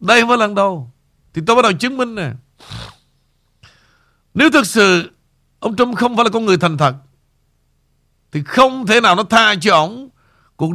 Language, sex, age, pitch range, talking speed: Vietnamese, male, 60-79, 135-220 Hz, 185 wpm